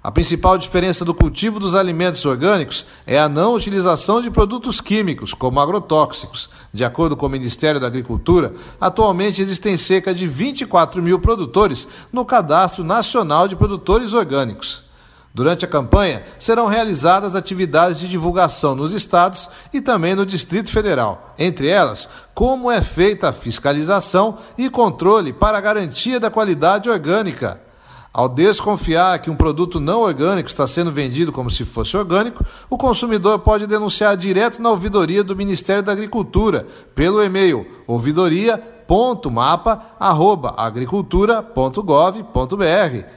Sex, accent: male, Brazilian